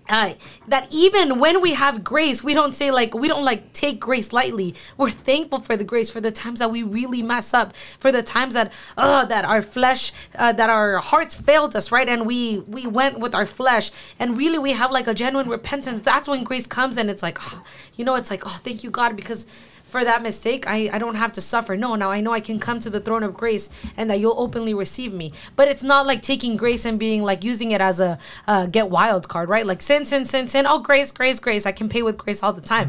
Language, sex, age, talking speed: English, female, 20-39, 255 wpm